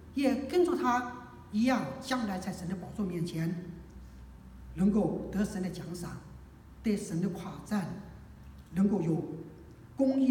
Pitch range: 170-240 Hz